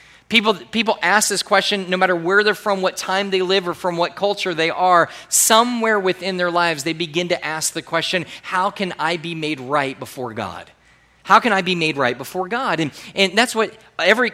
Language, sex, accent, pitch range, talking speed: English, male, American, 135-180 Hz, 215 wpm